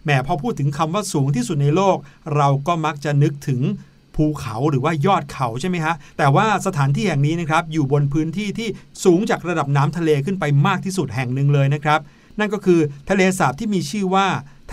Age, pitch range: 60-79, 145-190 Hz